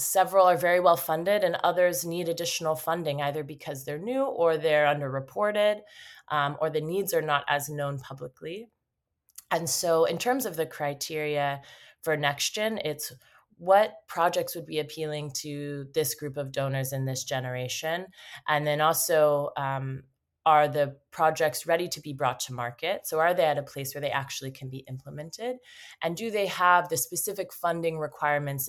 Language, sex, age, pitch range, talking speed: German, female, 20-39, 145-175 Hz, 170 wpm